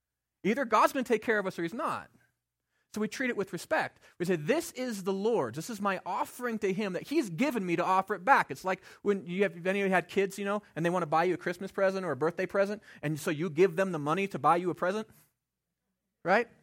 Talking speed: 265 wpm